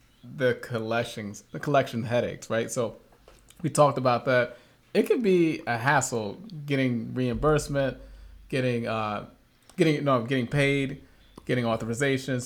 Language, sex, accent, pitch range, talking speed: English, male, American, 115-135 Hz, 130 wpm